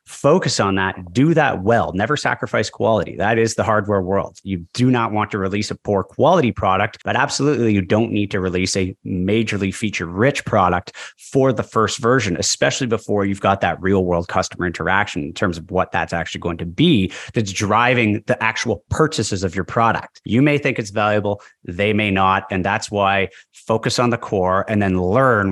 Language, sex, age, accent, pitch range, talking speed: English, male, 30-49, American, 100-125 Hz, 195 wpm